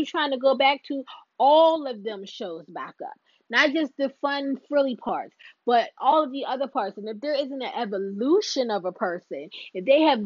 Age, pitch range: 20-39, 210-275 Hz